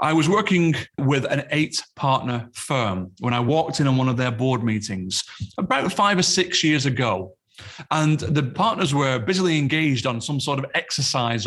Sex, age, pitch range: male, 30-49, 125-170 Hz